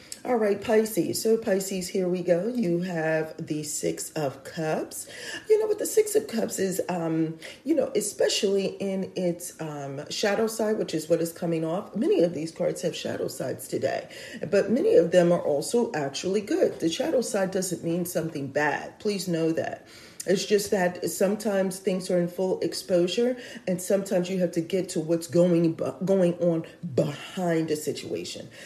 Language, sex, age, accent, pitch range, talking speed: English, female, 40-59, American, 160-195 Hz, 180 wpm